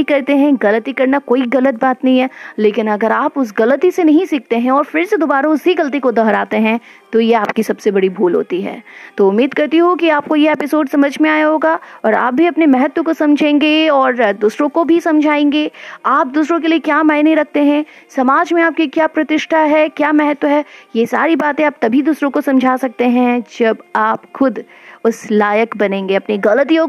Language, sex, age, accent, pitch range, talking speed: Hindi, female, 30-49, native, 245-310 Hz, 105 wpm